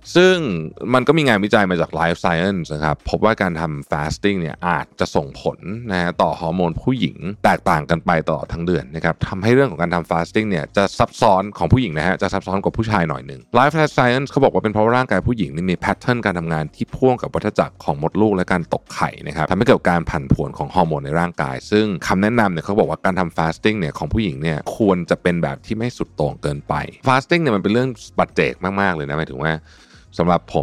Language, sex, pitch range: Thai, male, 80-105 Hz